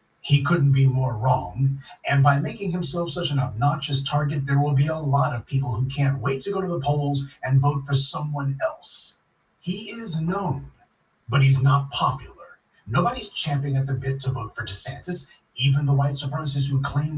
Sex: male